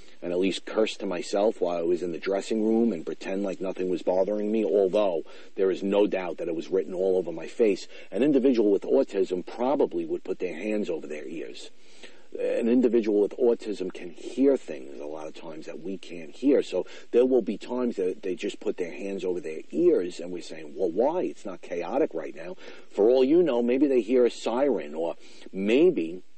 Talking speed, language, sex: 215 wpm, English, male